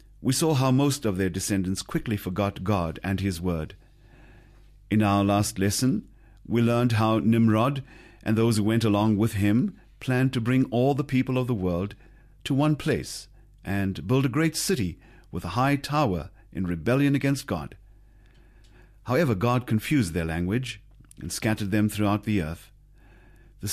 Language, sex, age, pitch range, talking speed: English, male, 50-69, 100-125 Hz, 165 wpm